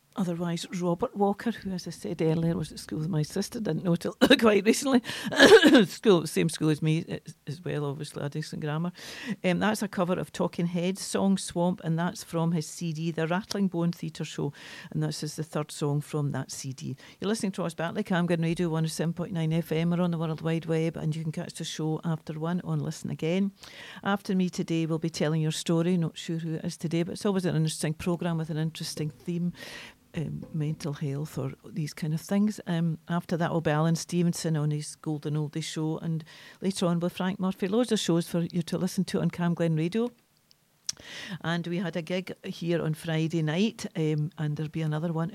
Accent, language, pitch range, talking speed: British, English, 160-185 Hz, 215 wpm